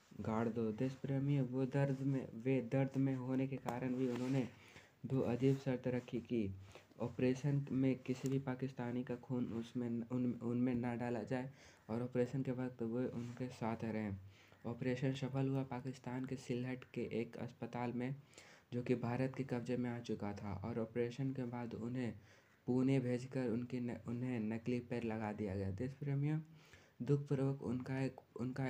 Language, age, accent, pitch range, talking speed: Hindi, 20-39, native, 115-130 Hz, 170 wpm